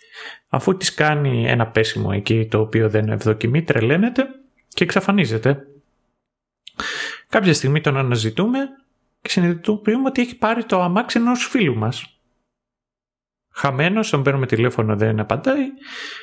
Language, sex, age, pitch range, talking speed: Greek, male, 30-49, 115-160 Hz, 120 wpm